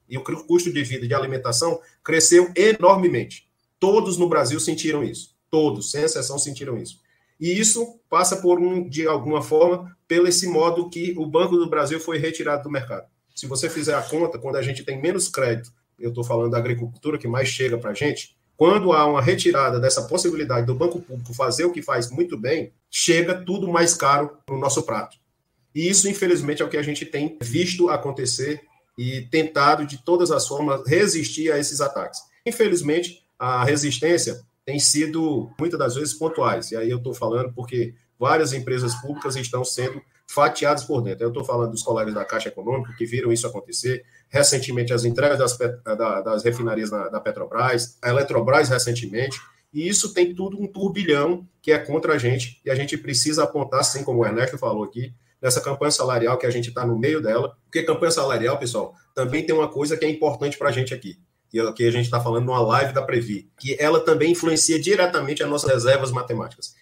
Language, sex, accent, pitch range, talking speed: Portuguese, male, Brazilian, 125-165 Hz, 195 wpm